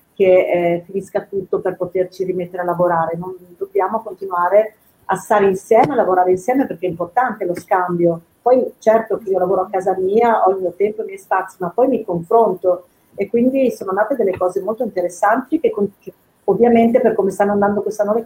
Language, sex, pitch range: Italian, female, 180-220 Hz